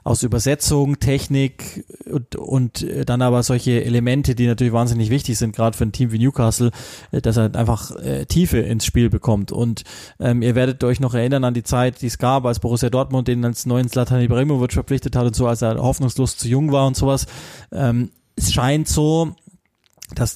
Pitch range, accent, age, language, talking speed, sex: 120-135 Hz, German, 20-39, German, 190 wpm, male